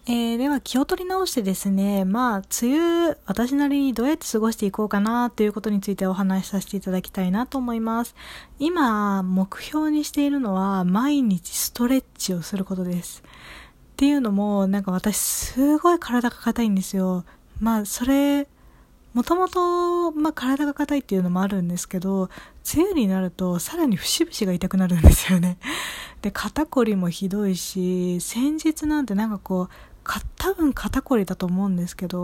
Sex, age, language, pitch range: female, 20-39, Japanese, 185-255 Hz